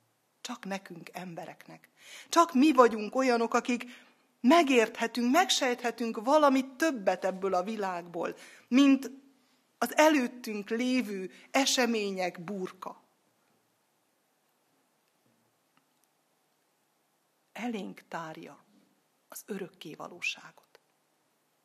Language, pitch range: Hungarian, 200-265 Hz